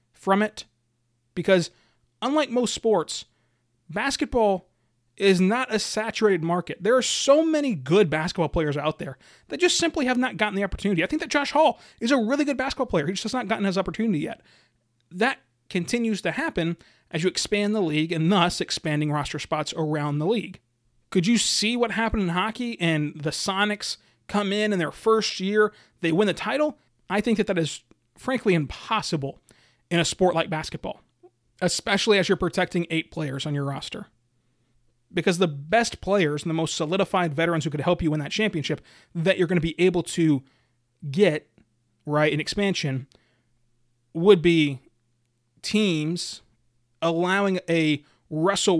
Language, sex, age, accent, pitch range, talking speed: English, male, 30-49, American, 145-205 Hz, 170 wpm